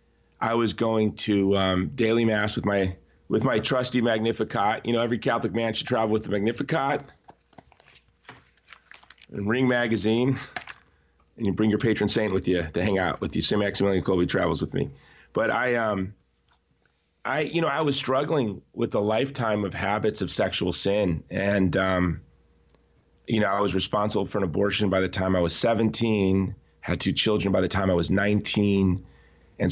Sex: male